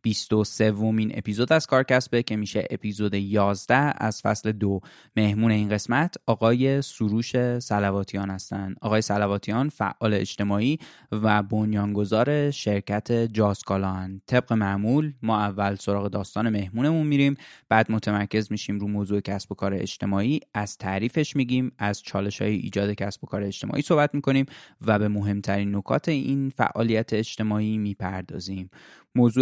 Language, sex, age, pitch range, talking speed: Persian, male, 20-39, 105-125 Hz, 135 wpm